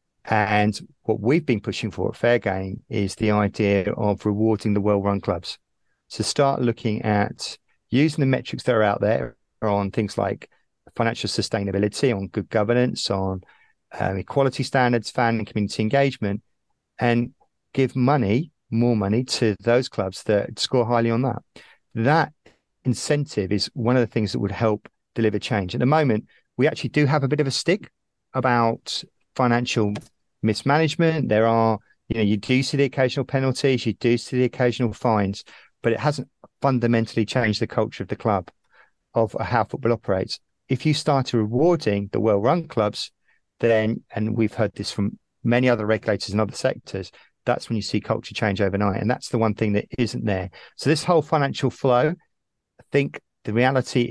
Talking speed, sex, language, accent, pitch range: 175 wpm, male, English, British, 105-130 Hz